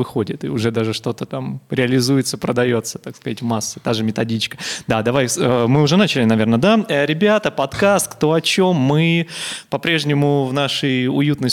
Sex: male